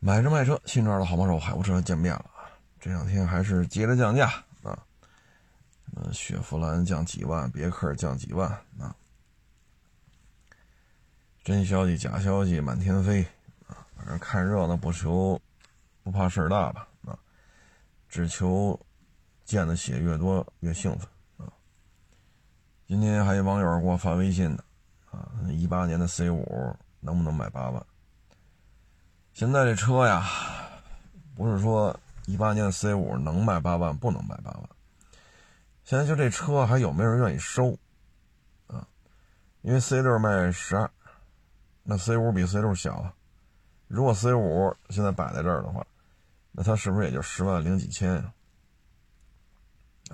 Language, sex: Chinese, male